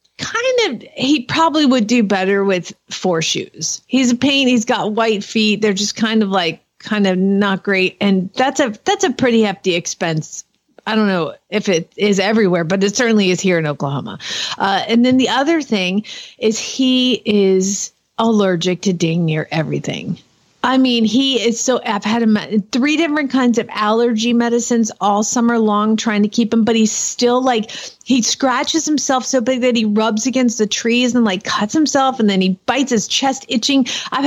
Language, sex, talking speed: English, female, 195 wpm